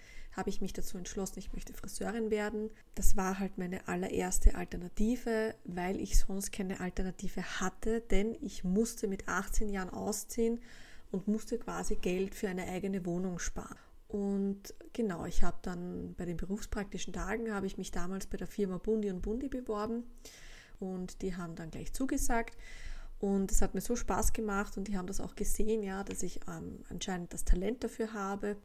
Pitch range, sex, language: 185-215 Hz, female, German